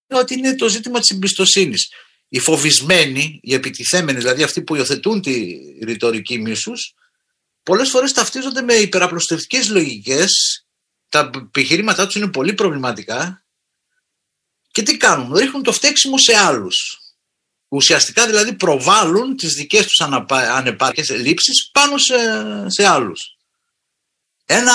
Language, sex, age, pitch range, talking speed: Greek, male, 50-69, 155-245 Hz, 120 wpm